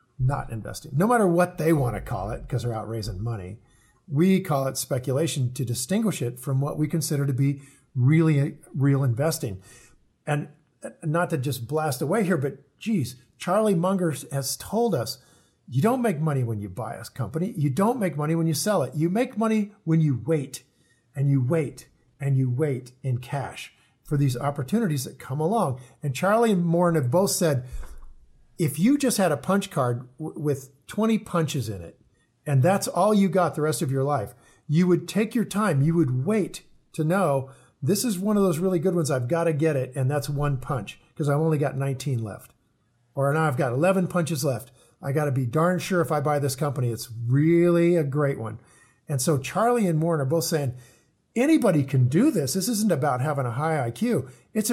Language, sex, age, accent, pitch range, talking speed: English, male, 50-69, American, 130-175 Hz, 205 wpm